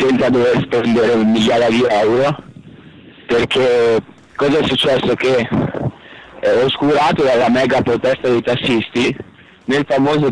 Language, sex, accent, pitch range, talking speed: Italian, male, native, 115-130 Hz, 130 wpm